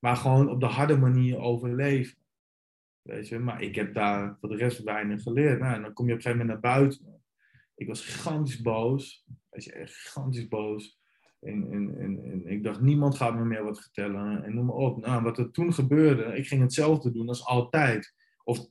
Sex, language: male, Dutch